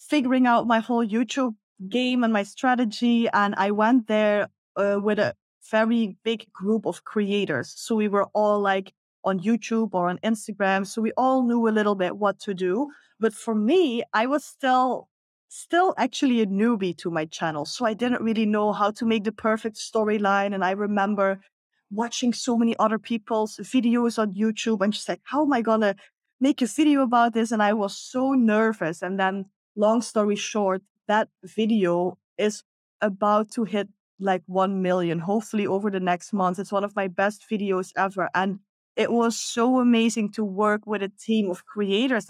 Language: English